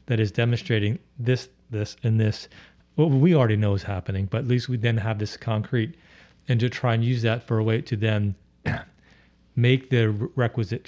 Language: English